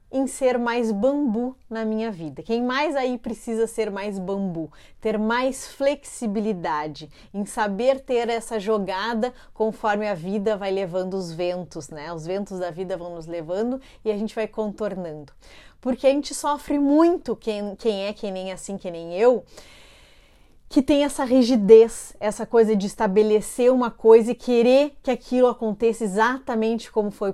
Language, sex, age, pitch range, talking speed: Portuguese, female, 30-49, 200-255 Hz, 160 wpm